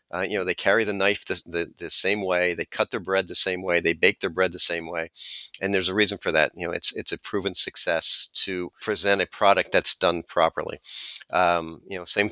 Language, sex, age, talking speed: English, male, 50-69, 245 wpm